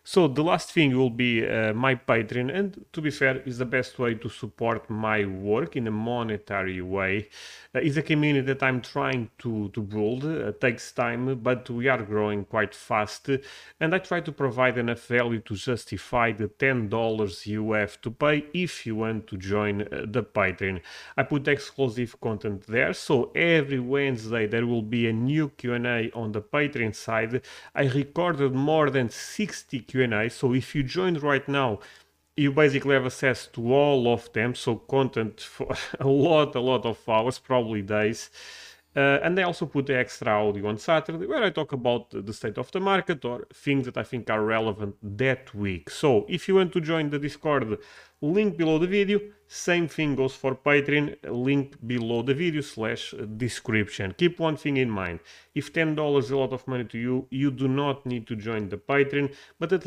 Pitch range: 110-145 Hz